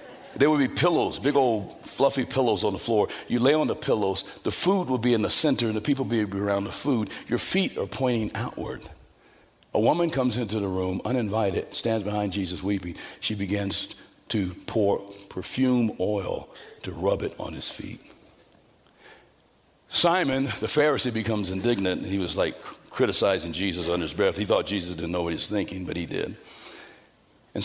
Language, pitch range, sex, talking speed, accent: English, 100-135 Hz, male, 185 wpm, American